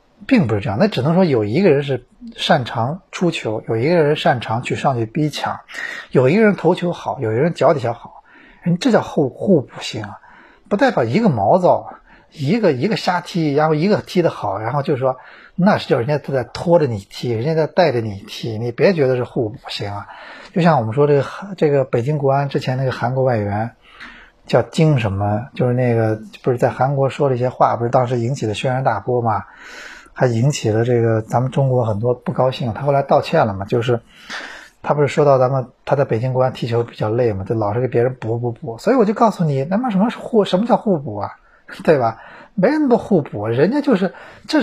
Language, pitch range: Chinese, 120-175 Hz